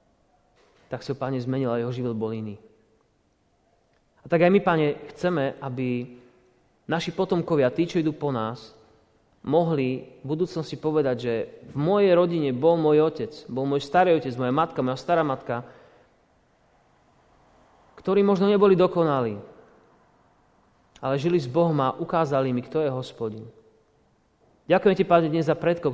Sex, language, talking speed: male, Slovak, 145 wpm